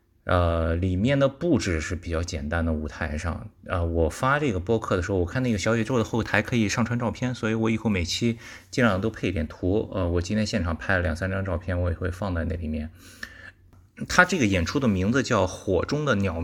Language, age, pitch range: Chinese, 20-39, 85-110 Hz